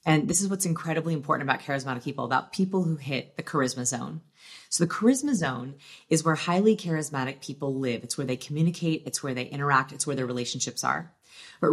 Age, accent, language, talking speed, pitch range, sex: 30-49, American, English, 205 wpm, 145-185 Hz, female